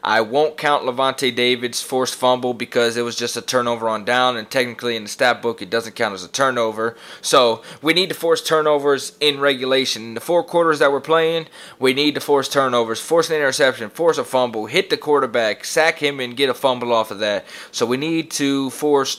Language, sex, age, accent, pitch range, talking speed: English, male, 20-39, American, 120-150 Hz, 220 wpm